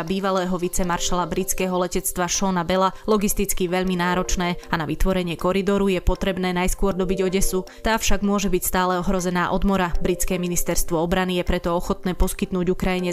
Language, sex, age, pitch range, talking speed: Slovak, female, 20-39, 175-190 Hz, 155 wpm